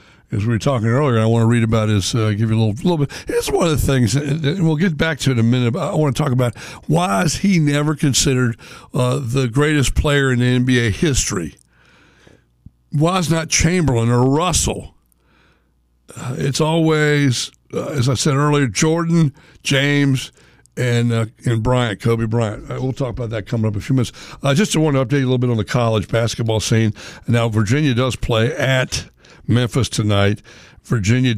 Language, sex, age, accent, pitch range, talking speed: English, male, 60-79, American, 110-140 Hz, 205 wpm